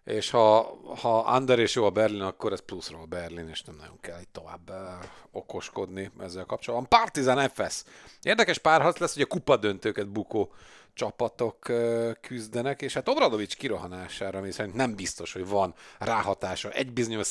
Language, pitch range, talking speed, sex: Hungarian, 105-120 Hz, 155 wpm, male